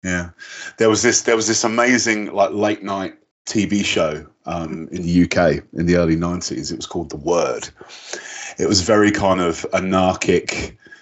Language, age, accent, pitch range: English, 30-49, British, 90-105 Hz